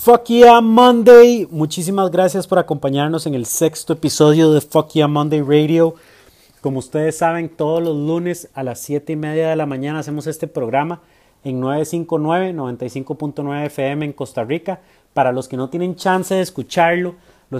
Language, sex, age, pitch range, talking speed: Spanish, male, 30-49, 140-170 Hz, 165 wpm